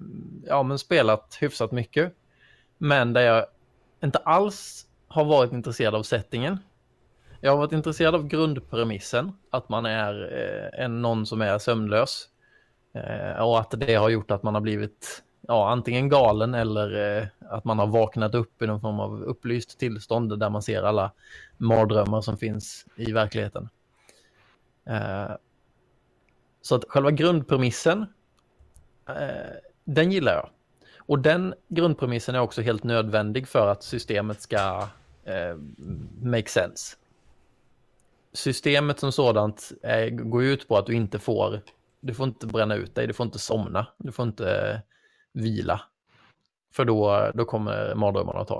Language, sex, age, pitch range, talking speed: Swedish, male, 20-39, 110-140 Hz, 140 wpm